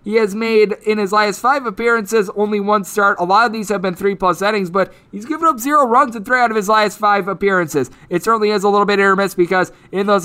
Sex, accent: male, American